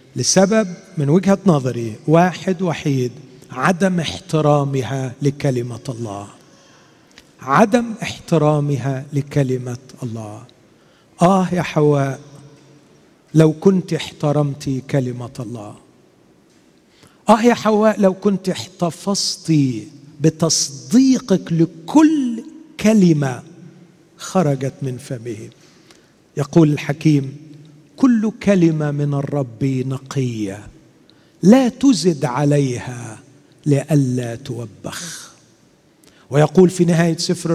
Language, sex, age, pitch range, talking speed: Arabic, male, 50-69, 135-185 Hz, 80 wpm